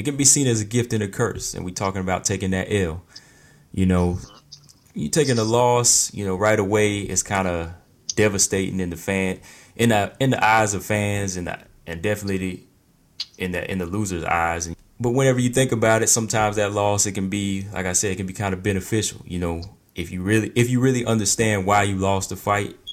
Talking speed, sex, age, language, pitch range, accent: 230 wpm, male, 20-39, English, 90-110 Hz, American